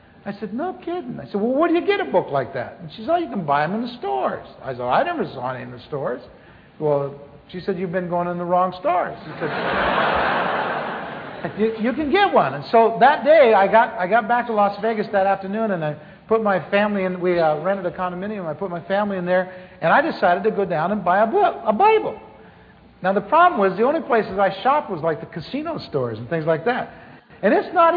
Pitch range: 185-245 Hz